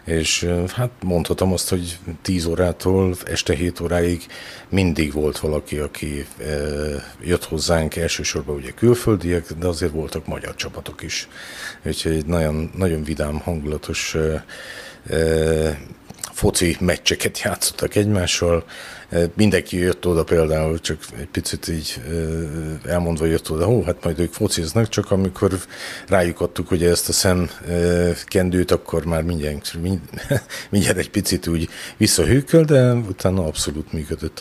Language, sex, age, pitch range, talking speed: Hungarian, male, 50-69, 80-90 Hz, 135 wpm